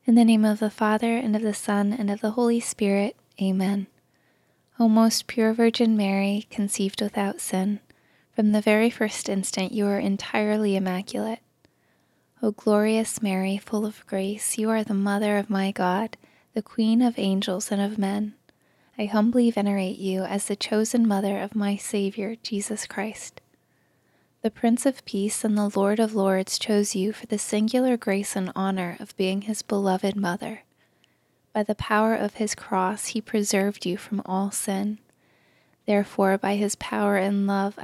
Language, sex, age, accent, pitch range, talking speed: English, female, 20-39, American, 195-220 Hz, 170 wpm